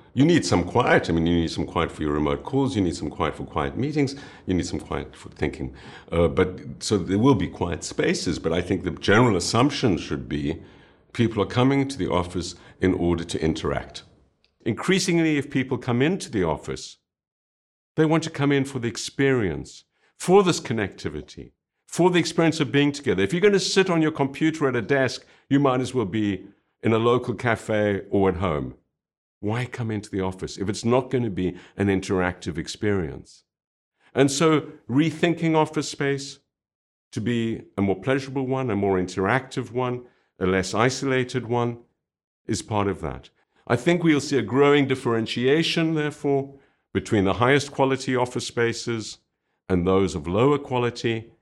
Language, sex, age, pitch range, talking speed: English, male, 60-79, 95-140 Hz, 180 wpm